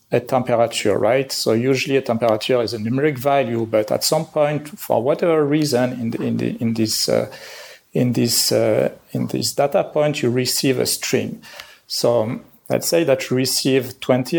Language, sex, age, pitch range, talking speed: English, male, 40-59, 120-150 Hz, 140 wpm